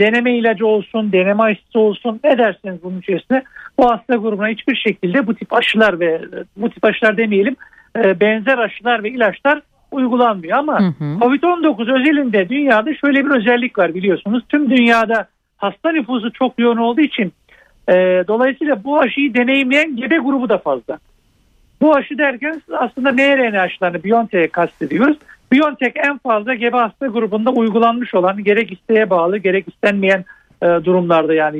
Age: 60-79